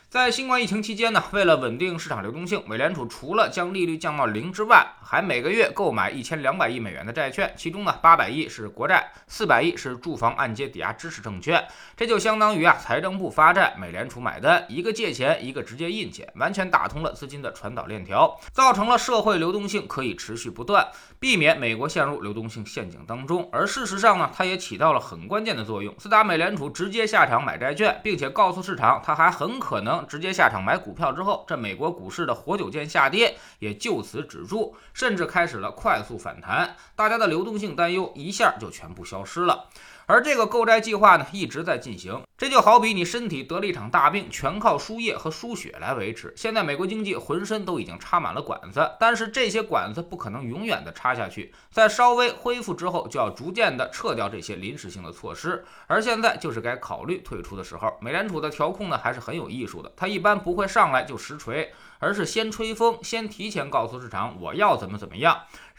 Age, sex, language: 20-39, male, Chinese